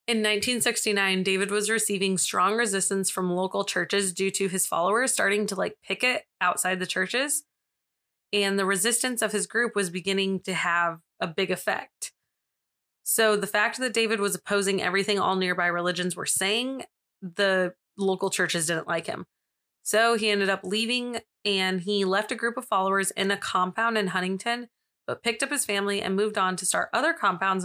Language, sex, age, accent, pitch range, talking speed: English, female, 20-39, American, 185-220 Hz, 180 wpm